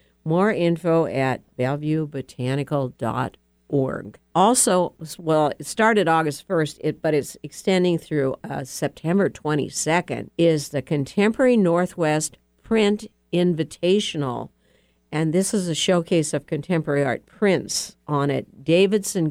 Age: 60-79